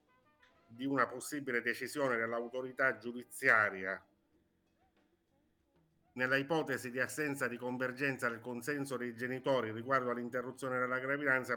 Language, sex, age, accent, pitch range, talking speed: Italian, male, 50-69, native, 120-135 Hz, 105 wpm